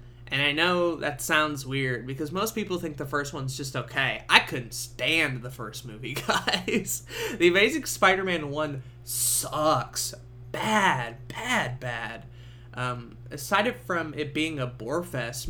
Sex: male